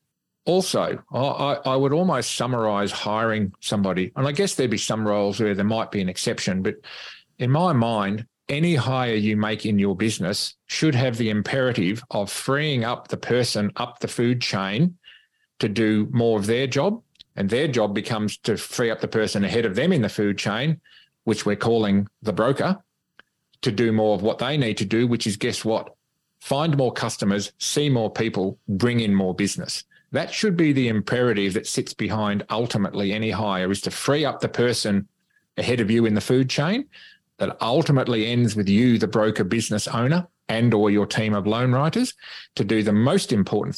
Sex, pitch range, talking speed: male, 105-125 Hz, 190 wpm